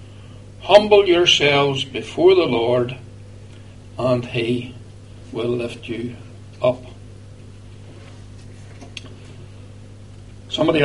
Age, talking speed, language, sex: 60-79, 65 wpm, English, male